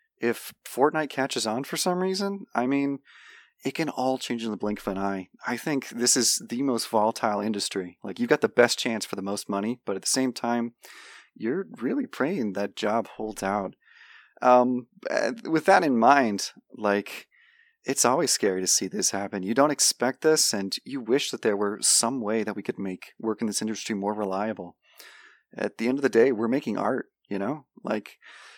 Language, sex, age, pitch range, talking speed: English, male, 30-49, 100-125 Hz, 200 wpm